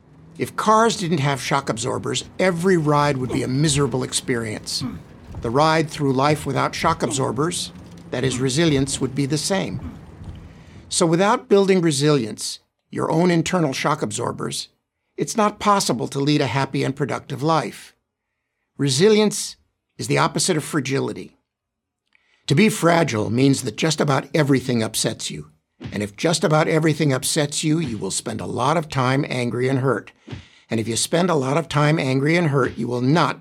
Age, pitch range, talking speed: 50-69, 120-155 Hz, 165 wpm